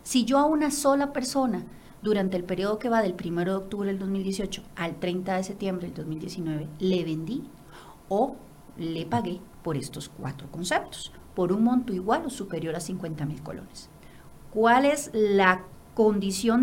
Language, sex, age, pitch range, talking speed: Spanish, female, 40-59, 170-230 Hz, 165 wpm